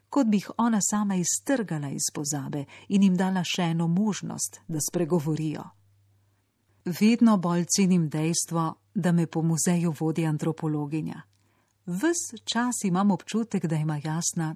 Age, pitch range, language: 40-59, 155-195 Hz, Italian